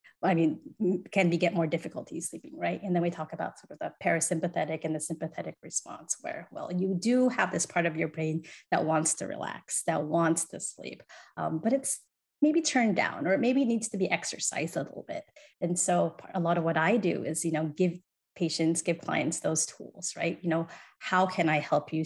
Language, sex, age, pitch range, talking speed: English, female, 30-49, 160-210 Hz, 225 wpm